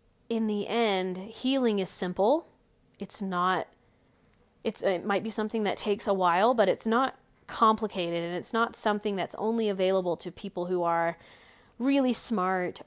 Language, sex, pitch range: English, female, 185-230 Hz